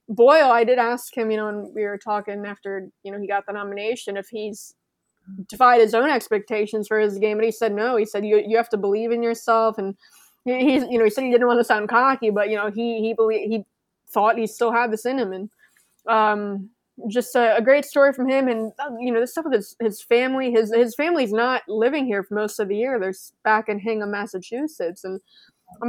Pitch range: 205-240 Hz